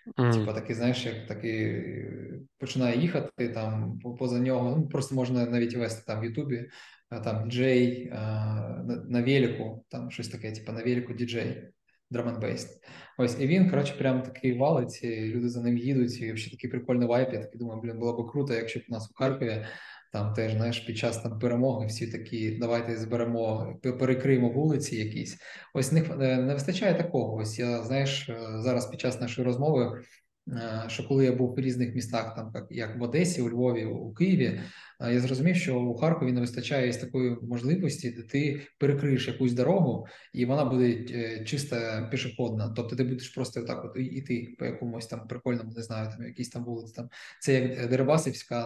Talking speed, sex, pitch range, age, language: 175 wpm, male, 115-130 Hz, 20-39, Ukrainian